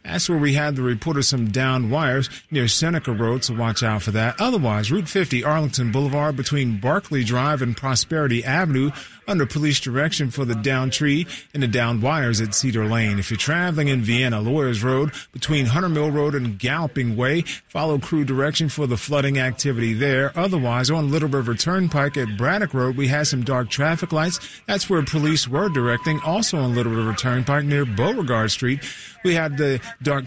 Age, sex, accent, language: 40-59, male, American, English